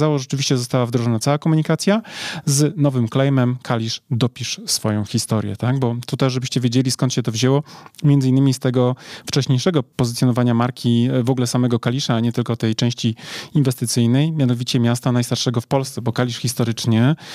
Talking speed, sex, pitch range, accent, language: 160 wpm, male, 115-135 Hz, native, Polish